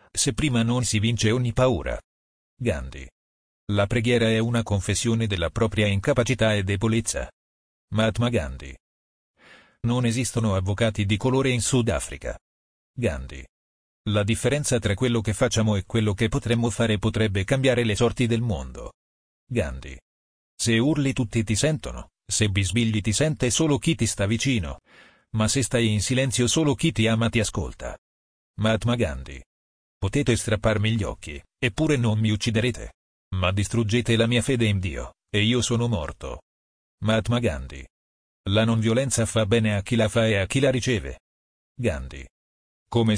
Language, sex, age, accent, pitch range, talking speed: Italian, male, 40-59, native, 75-120 Hz, 155 wpm